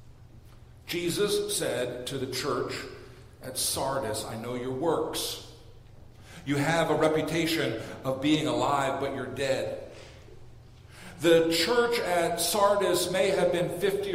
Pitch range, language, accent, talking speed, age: 135-185 Hz, English, American, 125 wpm, 50-69